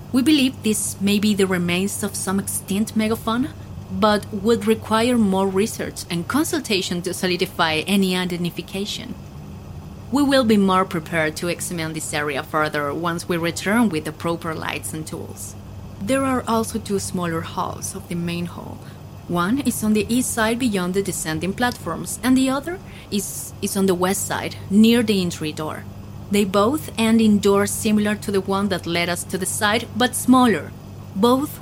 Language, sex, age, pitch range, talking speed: English, female, 30-49, 165-220 Hz, 175 wpm